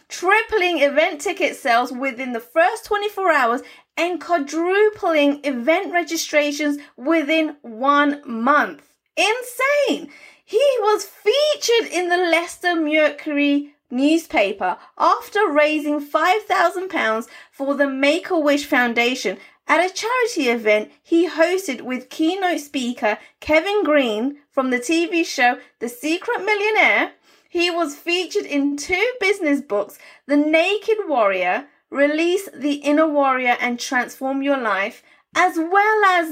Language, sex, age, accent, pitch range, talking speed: English, female, 30-49, British, 280-350 Hz, 115 wpm